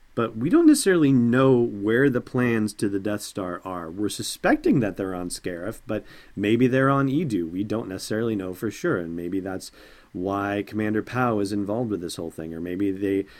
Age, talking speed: 40-59, 200 wpm